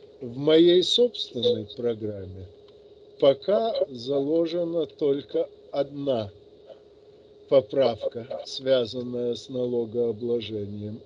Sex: male